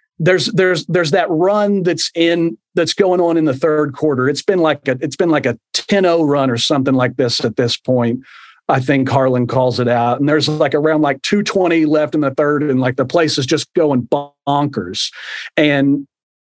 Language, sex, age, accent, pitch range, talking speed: English, male, 40-59, American, 145-165 Hz, 205 wpm